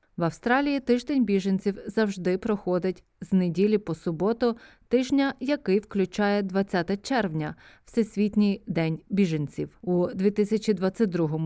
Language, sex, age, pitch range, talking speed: Ukrainian, female, 30-49, 180-240 Hz, 110 wpm